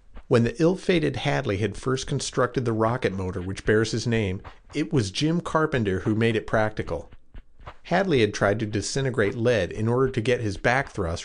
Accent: American